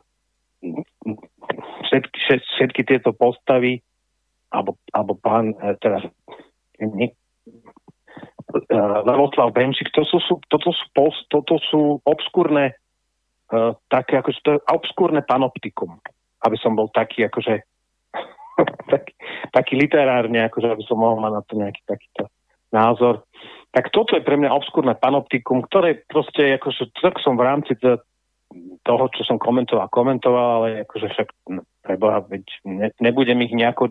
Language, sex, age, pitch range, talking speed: Slovak, male, 40-59, 115-150 Hz, 120 wpm